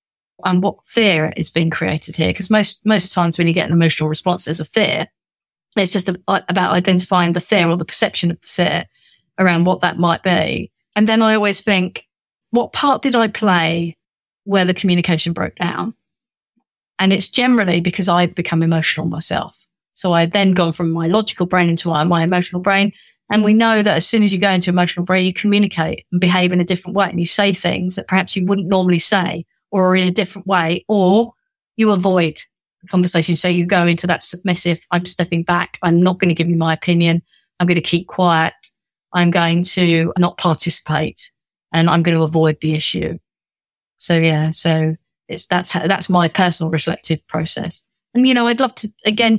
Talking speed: 200 wpm